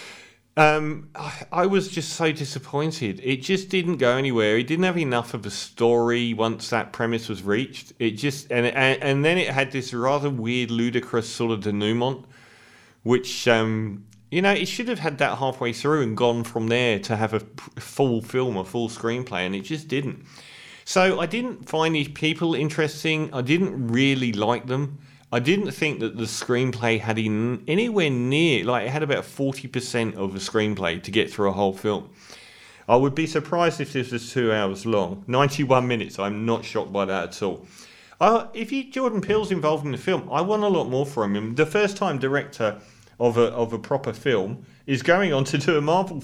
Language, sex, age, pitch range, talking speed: English, male, 40-59, 115-155 Hz, 200 wpm